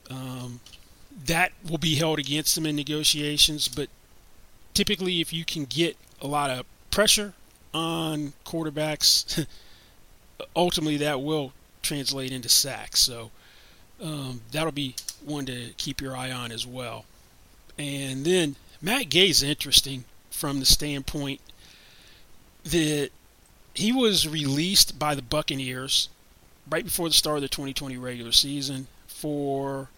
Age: 30-49